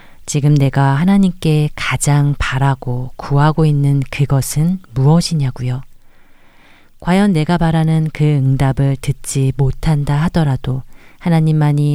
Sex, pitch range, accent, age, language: female, 130-160 Hz, native, 40-59, Korean